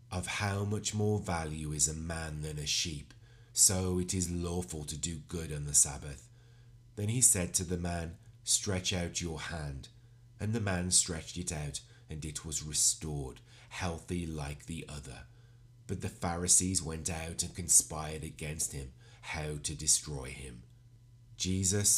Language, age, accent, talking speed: English, 30-49, British, 160 wpm